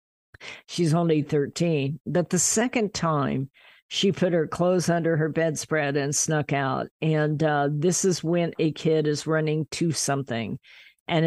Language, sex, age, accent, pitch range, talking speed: English, female, 50-69, American, 140-175 Hz, 155 wpm